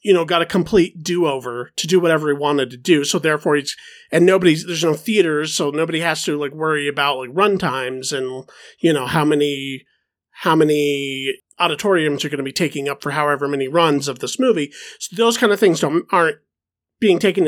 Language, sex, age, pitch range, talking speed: English, male, 40-59, 150-215 Hz, 215 wpm